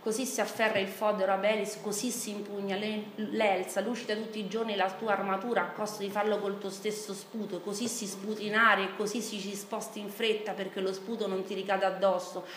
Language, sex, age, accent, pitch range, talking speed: Italian, female, 30-49, native, 195-220 Hz, 200 wpm